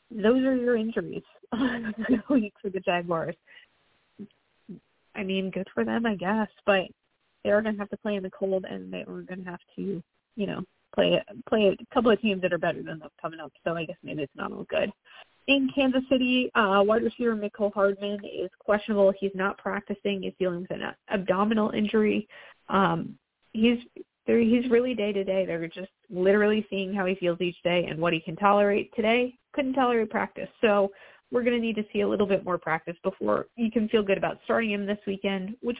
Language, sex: English, female